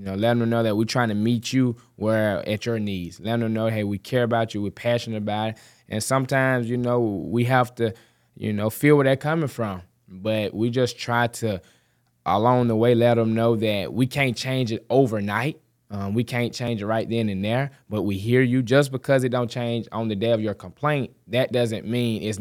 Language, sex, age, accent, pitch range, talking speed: English, male, 20-39, American, 105-125 Hz, 230 wpm